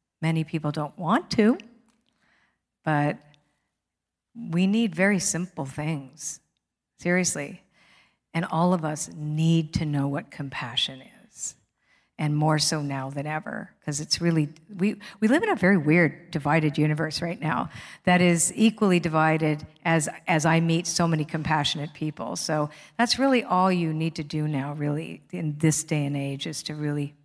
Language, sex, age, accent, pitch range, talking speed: English, female, 50-69, American, 150-195 Hz, 160 wpm